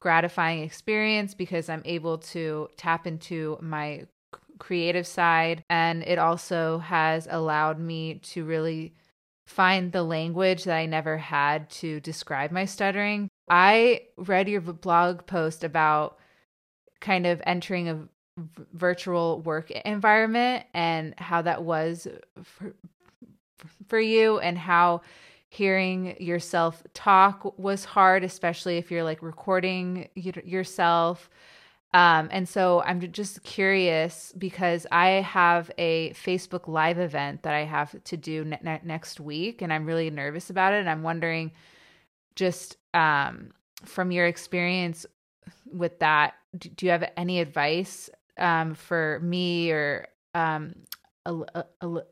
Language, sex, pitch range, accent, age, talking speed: English, female, 160-185 Hz, American, 20-39, 130 wpm